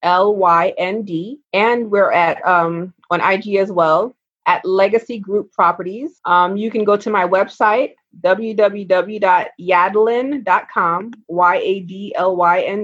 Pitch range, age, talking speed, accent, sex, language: 185-230 Hz, 30-49, 140 wpm, American, female, English